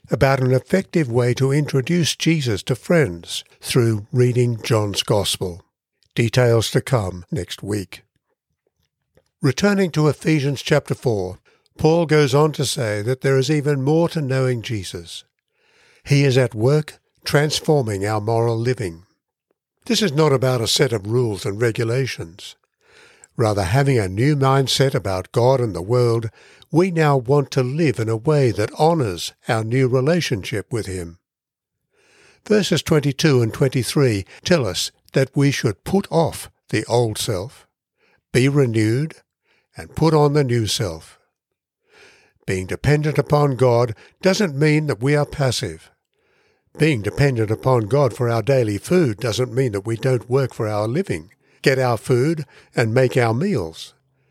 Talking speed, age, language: 150 wpm, 60-79, English